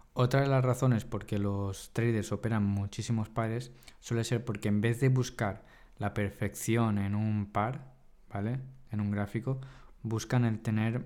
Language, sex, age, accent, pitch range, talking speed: Spanish, male, 20-39, Spanish, 100-120 Hz, 155 wpm